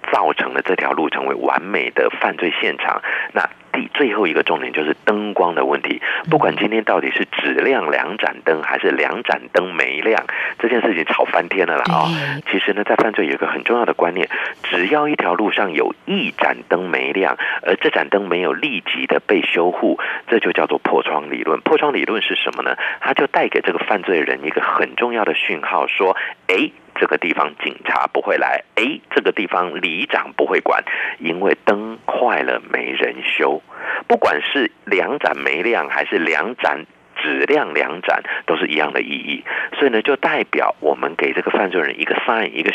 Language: Chinese